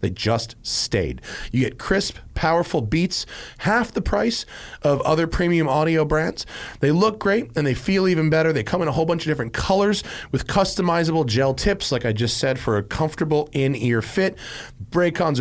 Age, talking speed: 30-49, 185 wpm